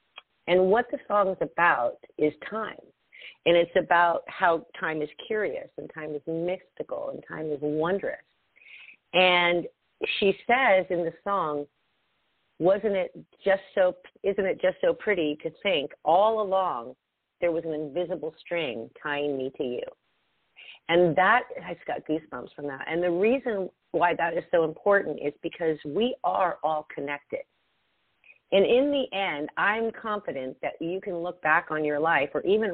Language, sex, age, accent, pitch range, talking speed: English, female, 50-69, American, 155-215 Hz, 165 wpm